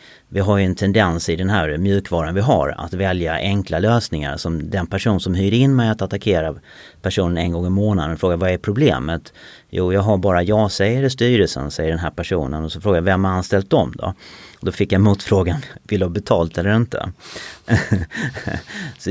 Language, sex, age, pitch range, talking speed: Swedish, male, 30-49, 85-105 Hz, 210 wpm